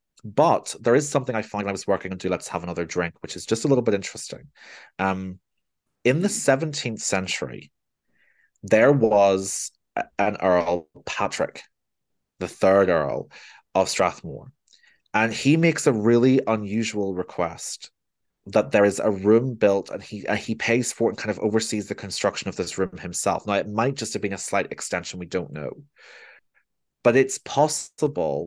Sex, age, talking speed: male, 20-39, 175 wpm